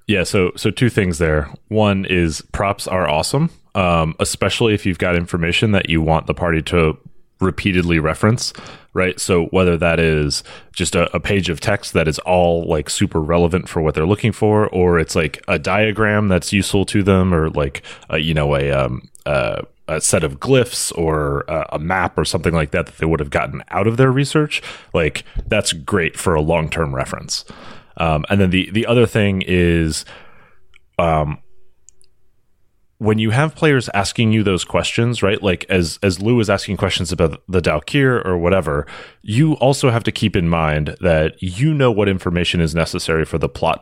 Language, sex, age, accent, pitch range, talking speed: English, male, 30-49, American, 80-105 Hz, 190 wpm